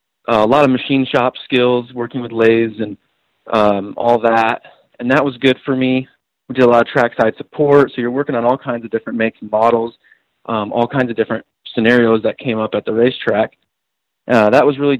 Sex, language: male, English